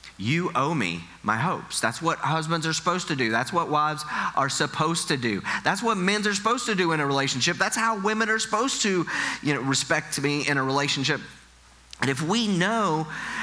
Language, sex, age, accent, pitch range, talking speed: English, male, 30-49, American, 105-180 Hz, 205 wpm